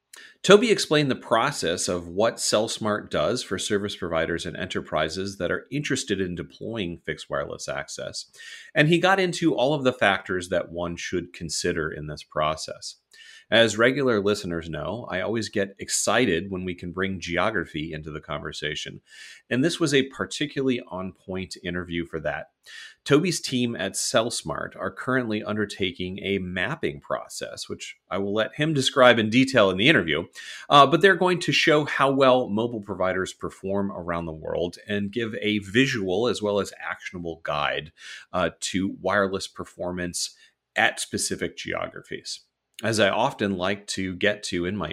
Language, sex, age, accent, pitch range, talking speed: English, male, 30-49, American, 90-120 Hz, 160 wpm